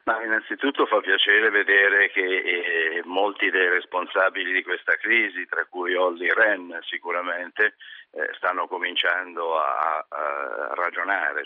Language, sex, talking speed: Italian, male, 110 wpm